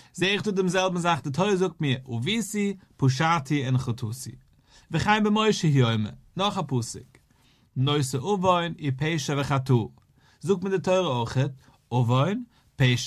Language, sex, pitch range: English, male, 130-180 Hz